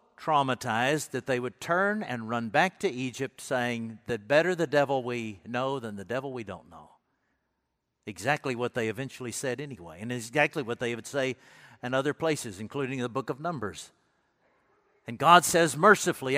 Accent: American